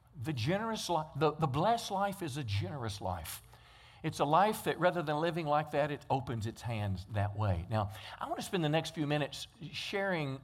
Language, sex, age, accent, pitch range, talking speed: English, male, 50-69, American, 120-165 Hz, 205 wpm